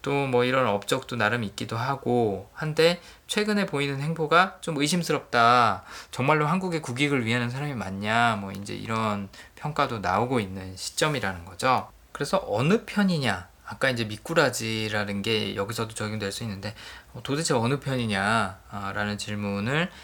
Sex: male